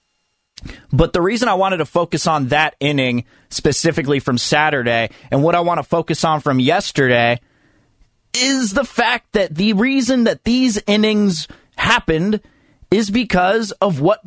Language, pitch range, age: English, 140-200 Hz, 30-49